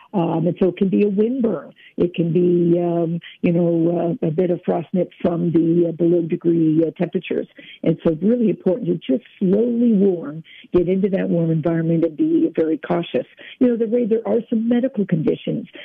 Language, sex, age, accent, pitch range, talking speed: English, female, 50-69, American, 165-195 Hz, 200 wpm